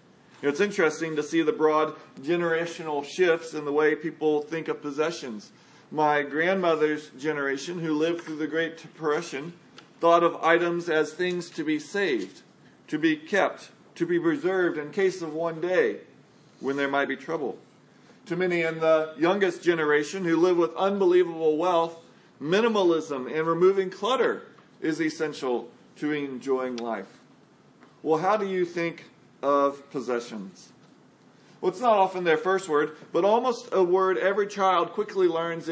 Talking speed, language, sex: 150 wpm, English, male